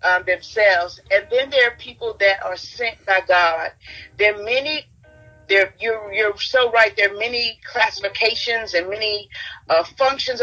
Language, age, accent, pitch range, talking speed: English, 40-59, American, 195-230 Hz, 160 wpm